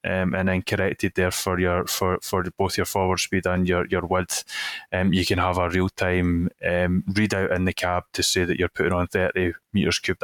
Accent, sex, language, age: British, male, English, 20-39